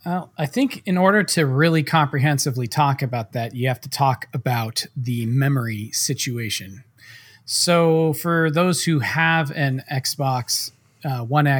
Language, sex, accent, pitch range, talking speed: English, male, American, 125-155 Hz, 145 wpm